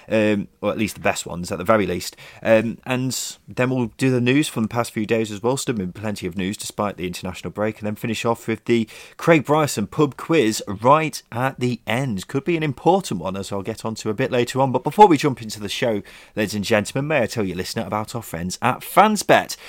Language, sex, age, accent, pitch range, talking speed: English, male, 30-49, British, 100-145 Hz, 250 wpm